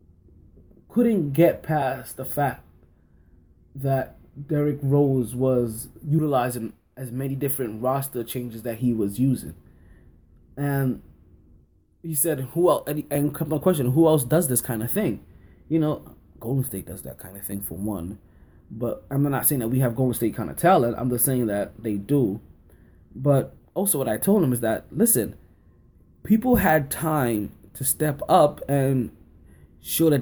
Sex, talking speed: male, 165 wpm